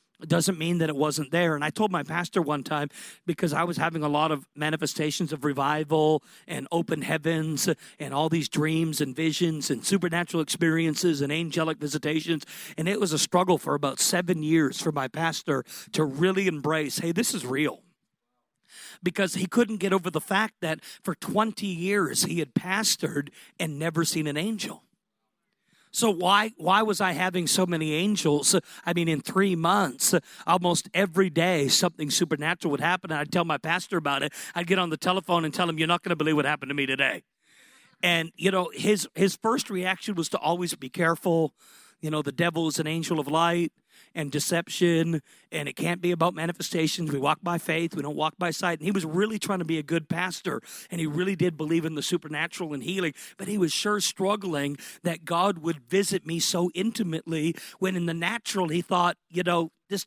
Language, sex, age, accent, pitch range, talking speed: English, male, 40-59, American, 155-190 Hz, 200 wpm